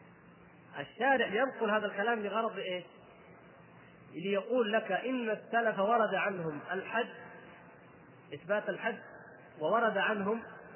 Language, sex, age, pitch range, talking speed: Arabic, male, 30-49, 155-205 Hz, 95 wpm